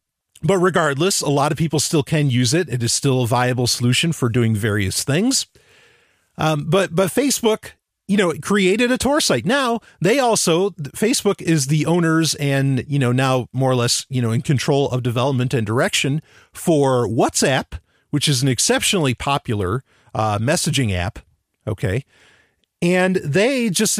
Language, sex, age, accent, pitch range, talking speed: English, male, 40-59, American, 125-185 Hz, 170 wpm